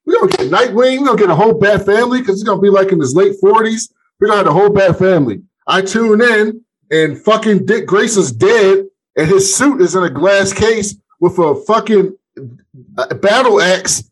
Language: English